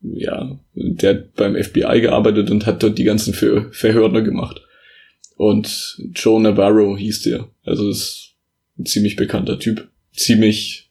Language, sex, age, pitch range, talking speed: German, male, 20-39, 105-115 Hz, 145 wpm